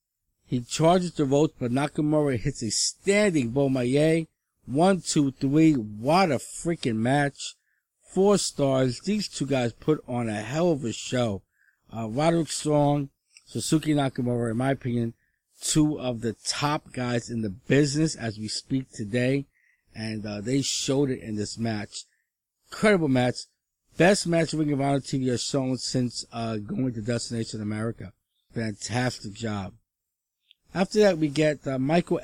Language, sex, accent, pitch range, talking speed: English, male, American, 115-150 Hz, 155 wpm